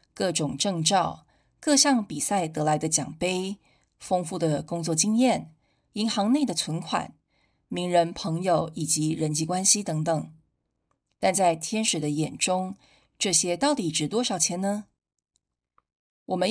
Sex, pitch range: female, 160-205 Hz